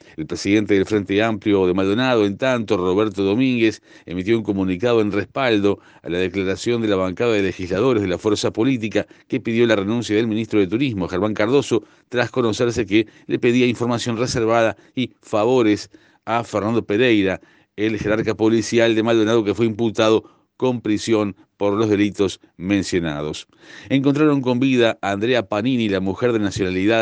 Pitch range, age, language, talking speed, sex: 95-115 Hz, 50-69, Spanish, 165 wpm, male